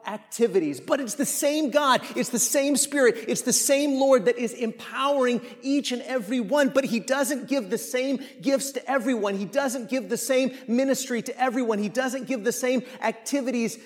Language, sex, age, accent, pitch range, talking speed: English, male, 30-49, American, 230-275 Hz, 190 wpm